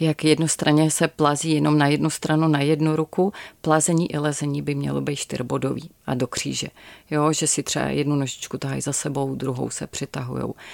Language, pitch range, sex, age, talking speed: Czech, 140-170 Hz, female, 30-49, 185 wpm